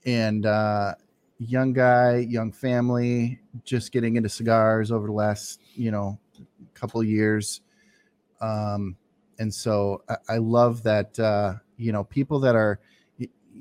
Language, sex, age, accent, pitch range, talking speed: English, male, 30-49, American, 110-130 Hz, 140 wpm